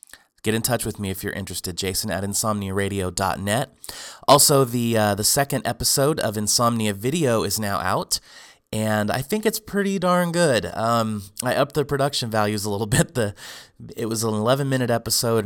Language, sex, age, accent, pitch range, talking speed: English, male, 30-49, American, 100-130 Hz, 175 wpm